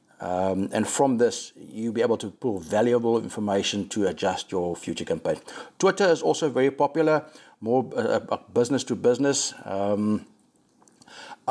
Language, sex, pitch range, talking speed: English, male, 100-135 Hz, 130 wpm